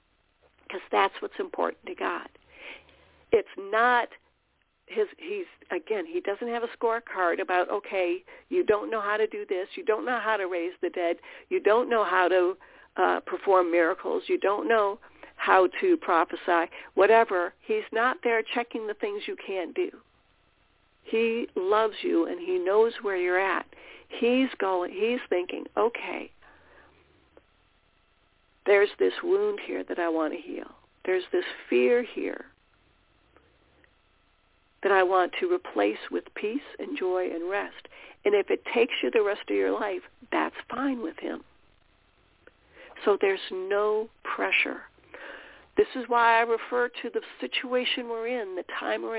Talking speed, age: 155 wpm, 50-69